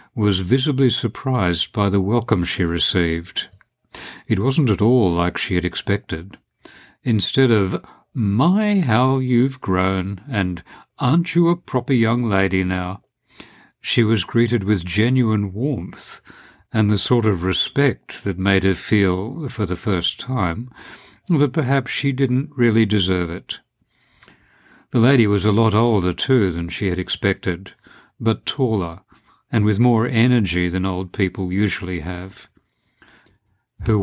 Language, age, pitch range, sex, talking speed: English, 60-79, 95-125 Hz, male, 140 wpm